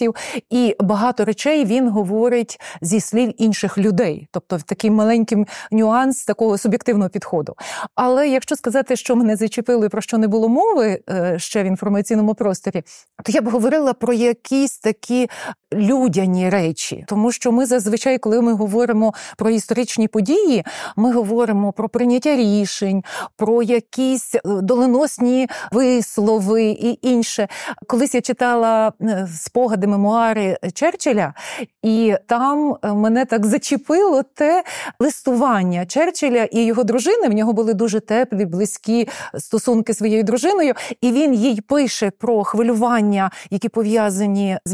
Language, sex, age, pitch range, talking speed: Ukrainian, female, 30-49, 215-250 Hz, 135 wpm